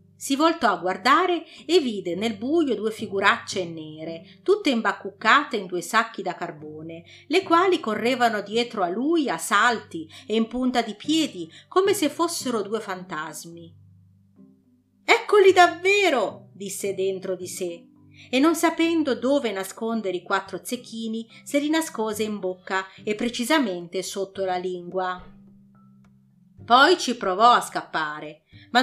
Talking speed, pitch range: 135 wpm, 180-250 Hz